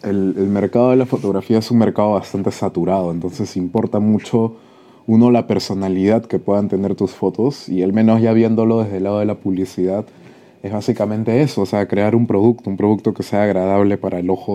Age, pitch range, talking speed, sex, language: 20-39, 95-125 Hz, 200 wpm, male, Spanish